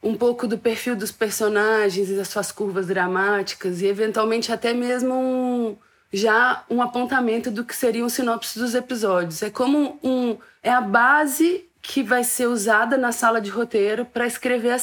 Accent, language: Brazilian, English